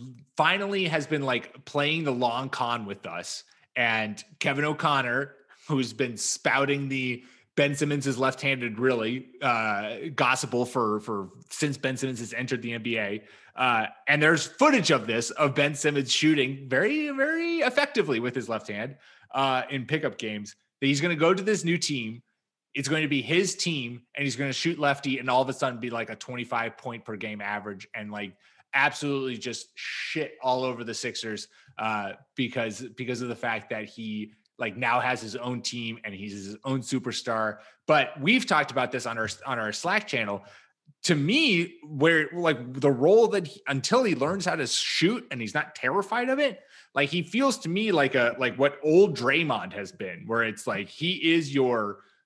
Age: 20-39